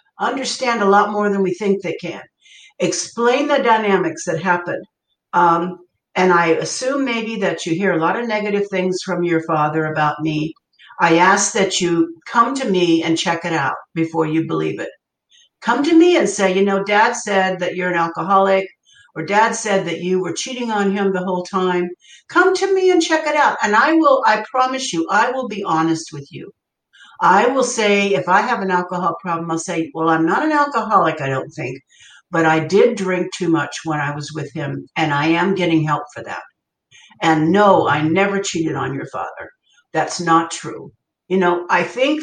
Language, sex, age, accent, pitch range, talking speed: English, female, 60-79, American, 165-235 Hz, 205 wpm